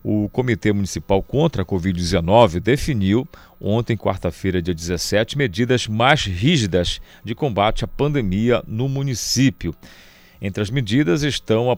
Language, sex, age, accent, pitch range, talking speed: Portuguese, male, 40-59, Brazilian, 95-120 Hz, 125 wpm